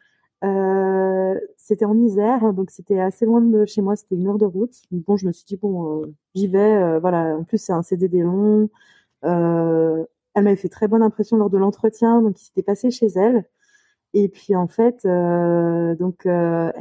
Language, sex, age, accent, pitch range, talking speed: French, female, 20-39, French, 180-220 Hz, 200 wpm